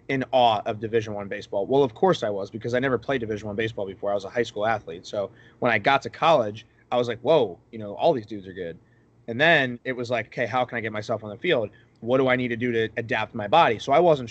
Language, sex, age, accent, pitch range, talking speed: English, male, 20-39, American, 115-130 Hz, 290 wpm